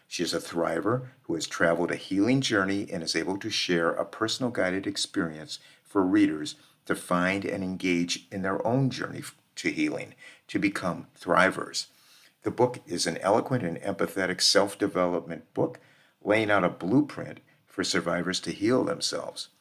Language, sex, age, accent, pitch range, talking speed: English, male, 50-69, American, 90-115 Hz, 160 wpm